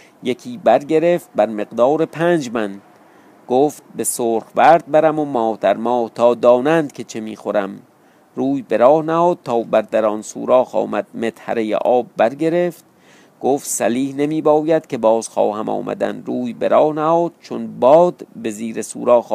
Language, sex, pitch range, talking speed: Persian, male, 115-155 Hz, 150 wpm